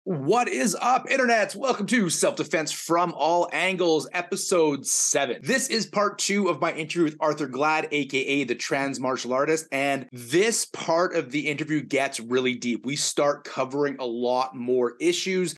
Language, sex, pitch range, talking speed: English, male, 130-175 Hz, 165 wpm